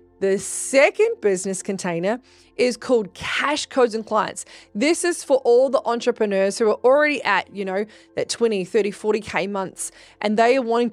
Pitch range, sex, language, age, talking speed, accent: 195-250 Hz, female, English, 20-39, 170 wpm, Australian